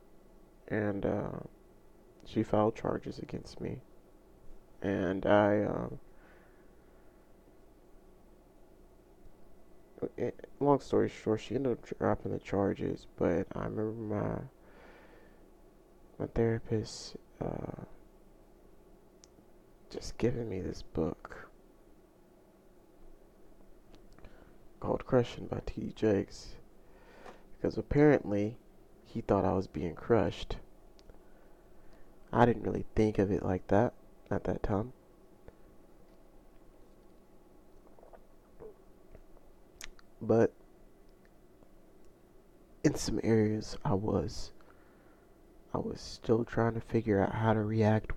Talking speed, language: 90 wpm, English